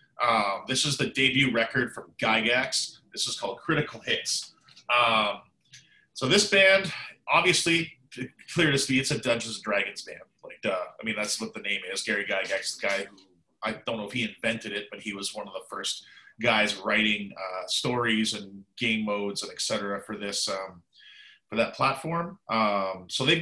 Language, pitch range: English, 105-145 Hz